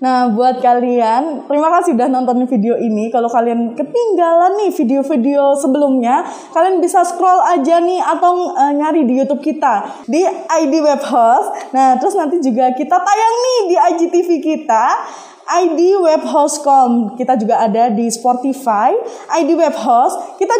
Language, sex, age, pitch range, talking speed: Indonesian, female, 20-39, 245-345 Hz, 135 wpm